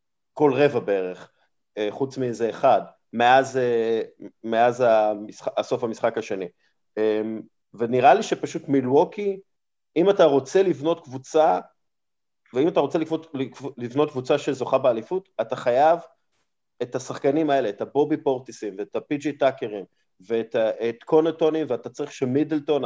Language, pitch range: Hebrew, 120-155 Hz